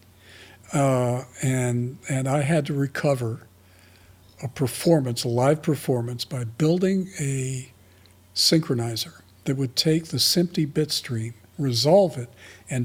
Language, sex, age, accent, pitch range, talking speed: English, male, 60-79, American, 115-170 Hz, 115 wpm